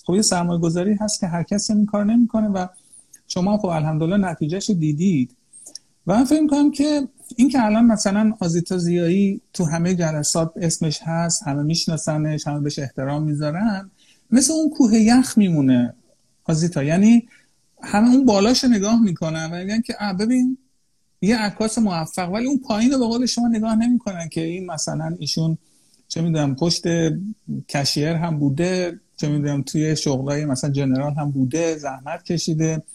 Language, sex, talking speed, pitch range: Persian, male, 160 wpm, 150-210 Hz